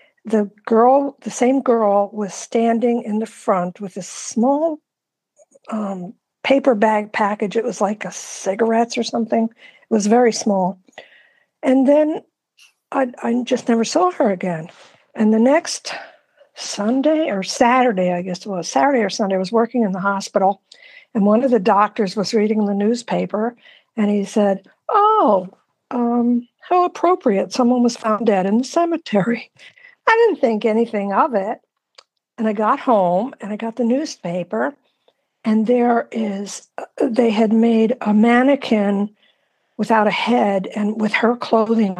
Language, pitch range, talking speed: English, 200-250 Hz, 155 wpm